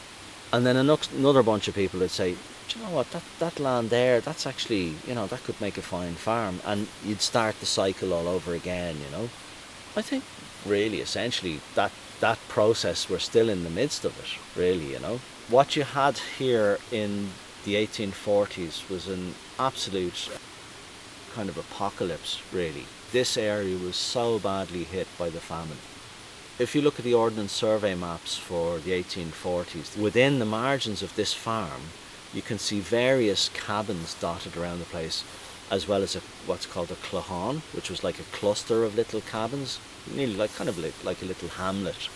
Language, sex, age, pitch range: English, male, 30-49, 90-120 Hz